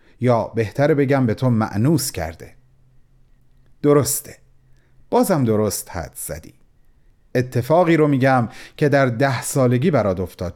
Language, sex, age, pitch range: Persian, male, 40-59, 130-175 Hz